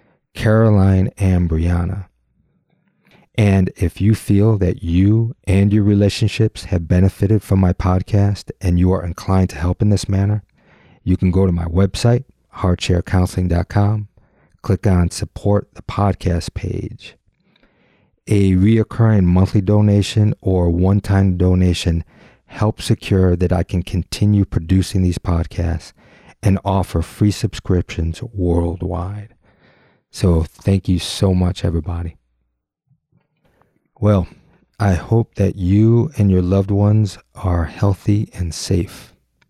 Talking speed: 120 wpm